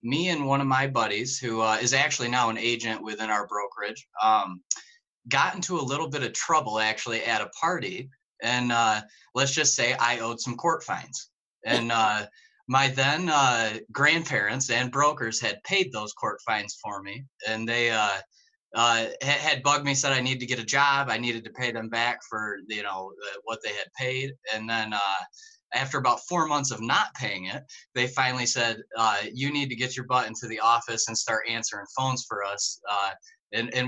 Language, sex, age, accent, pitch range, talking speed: English, male, 20-39, American, 110-135 Hz, 200 wpm